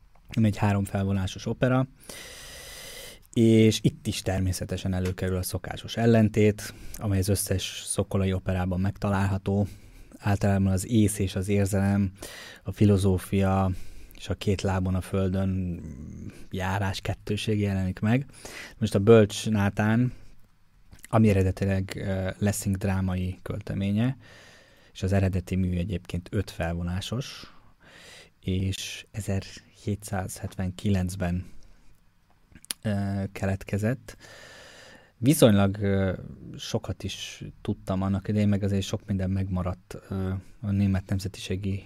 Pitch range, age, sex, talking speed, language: 95-105 Hz, 20-39, male, 105 wpm, Hungarian